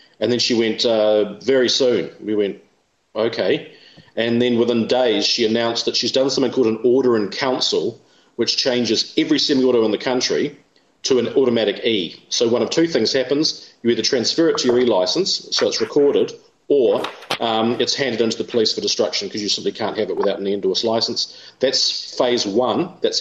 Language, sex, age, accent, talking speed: English, male, 40-59, Australian, 200 wpm